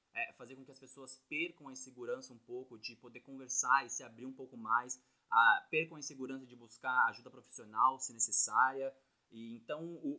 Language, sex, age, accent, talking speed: Portuguese, male, 20-39, Brazilian, 195 wpm